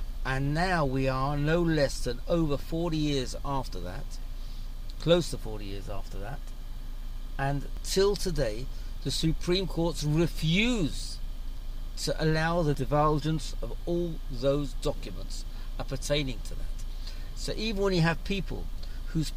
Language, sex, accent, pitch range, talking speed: English, male, British, 120-170 Hz, 135 wpm